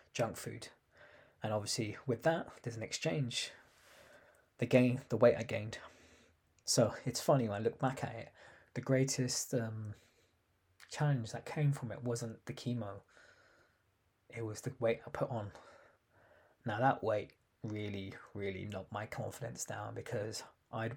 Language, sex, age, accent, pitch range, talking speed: English, male, 20-39, British, 105-125 Hz, 150 wpm